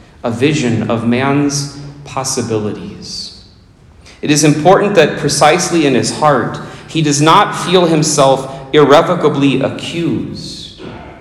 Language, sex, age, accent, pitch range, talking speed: English, male, 40-59, American, 115-155 Hz, 105 wpm